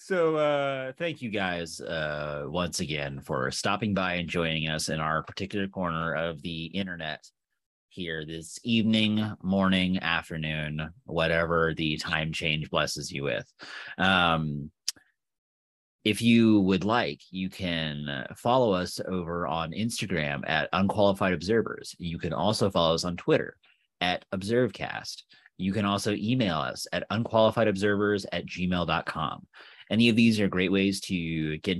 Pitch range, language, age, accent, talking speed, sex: 85-120 Hz, English, 30-49, American, 140 wpm, male